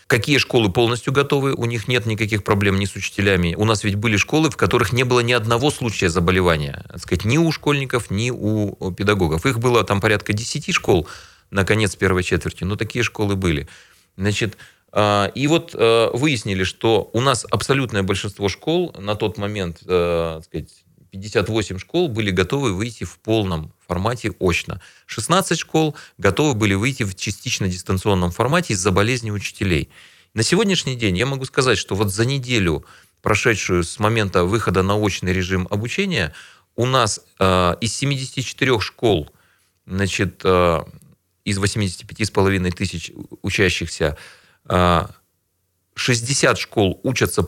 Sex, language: male, Russian